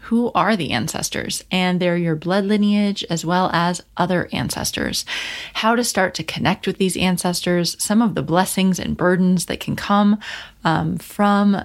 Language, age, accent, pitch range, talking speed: English, 30-49, American, 165-195 Hz, 170 wpm